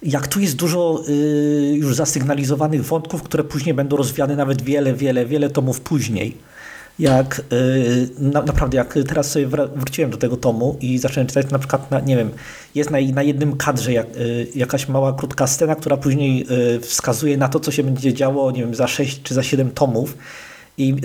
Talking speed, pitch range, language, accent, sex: 170 wpm, 130-150 Hz, Polish, native, male